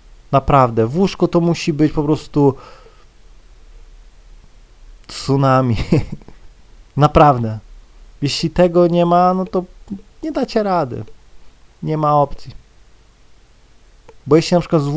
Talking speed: 110 wpm